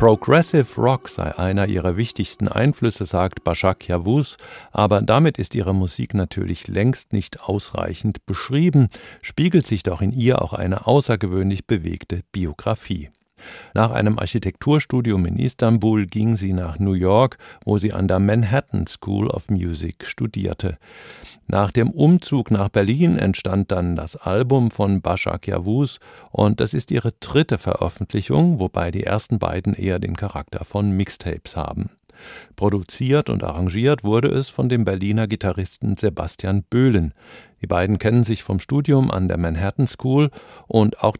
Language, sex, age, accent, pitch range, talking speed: German, male, 50-69, German, 95-115 Hz, 145 wpm